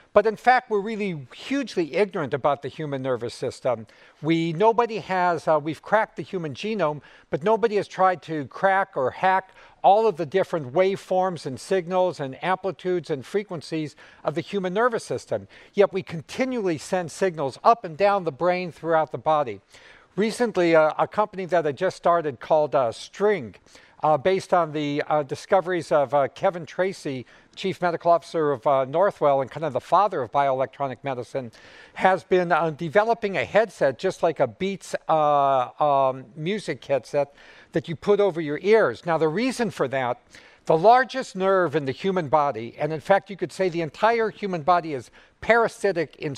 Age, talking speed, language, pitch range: 50-69, 180 wpm, English, 155-200 Hz